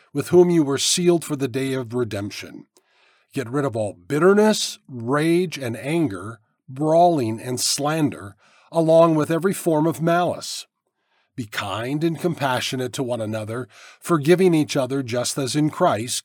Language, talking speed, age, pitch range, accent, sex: English, 150 wpm, 50-69, 115-165 Hz, American, male